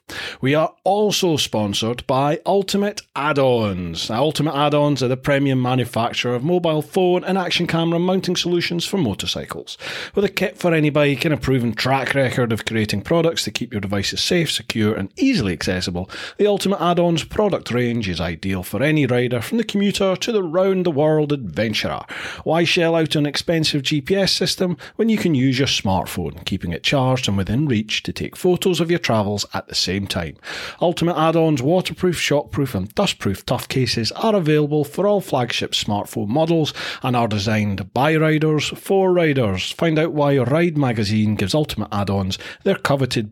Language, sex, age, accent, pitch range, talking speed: English, male, 40-59, British, 110-170 Hz, 175 wpm